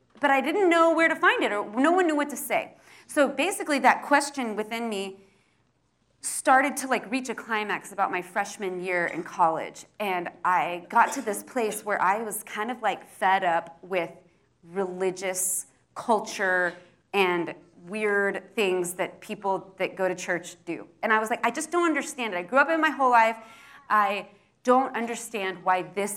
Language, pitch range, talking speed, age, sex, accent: English, 185-255 Hz, 185 wpm, 30-49, female, American